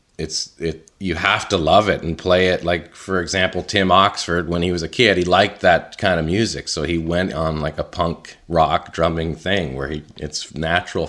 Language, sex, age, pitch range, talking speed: English, male, 30-49, 80-95 Hz, 215 wpm